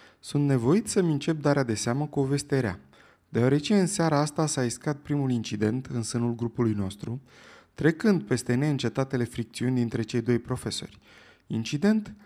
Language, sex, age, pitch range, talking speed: Romanian, male, 20-39, 115-150 Hz, 145 wpm